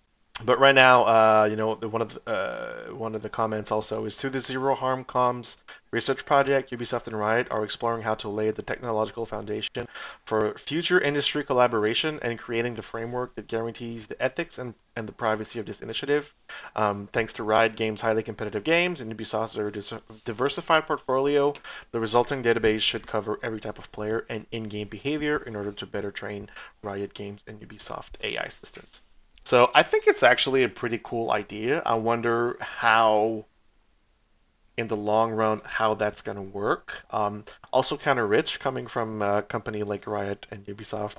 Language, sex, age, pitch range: English, male, 30-49, 105-120 Hz